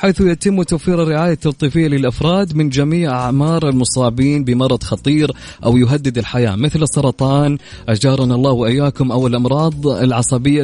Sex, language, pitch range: male, Arabic, 125-155 Hz